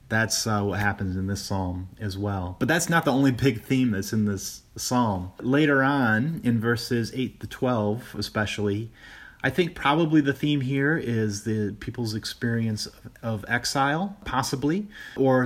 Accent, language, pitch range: American, English, 100-125 Hz